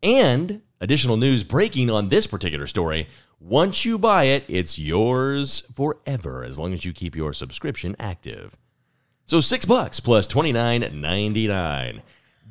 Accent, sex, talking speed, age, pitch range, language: American, male, 135 wpm, 40-59, 100-165 Hz, English